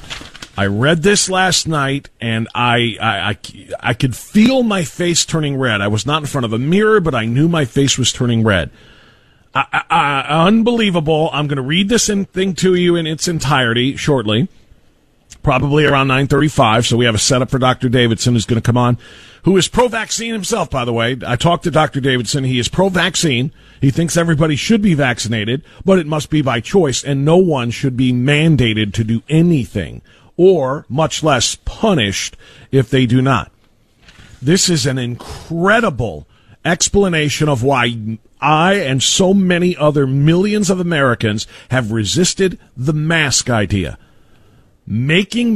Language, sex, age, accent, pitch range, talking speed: English, male, 40-59, American, 120-170 Hz, 170 wpm